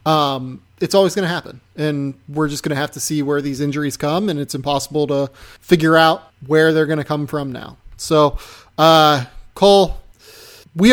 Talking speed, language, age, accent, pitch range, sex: 190 wpm, English, 30-49, American, 145-190 Hz, male